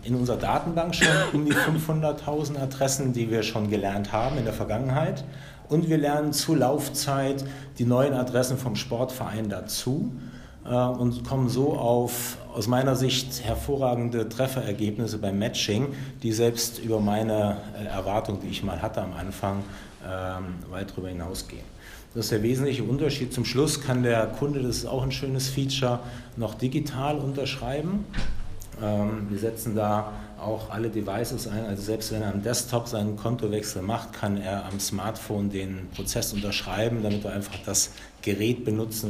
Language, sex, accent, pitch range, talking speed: German, male, German, 100-125 Hz, 155 wpm